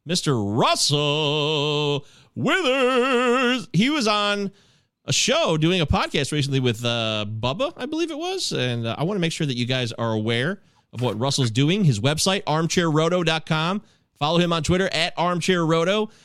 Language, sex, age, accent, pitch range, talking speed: English, male, 30-49, American, 135-190 Hz, 165 wpm